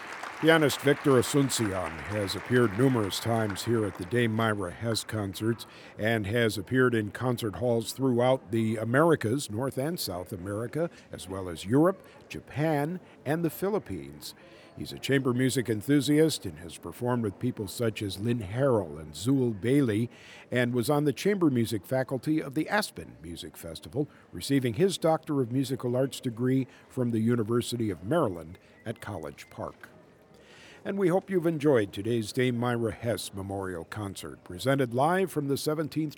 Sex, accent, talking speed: male, American, 160 wpm